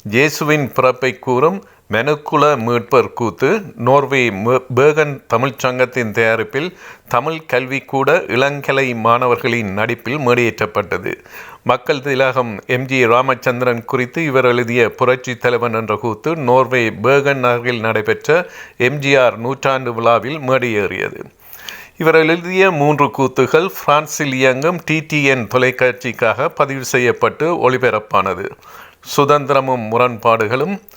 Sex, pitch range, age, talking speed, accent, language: male, 120-140 Hz, 50-69, 95 wpm, native, Tamil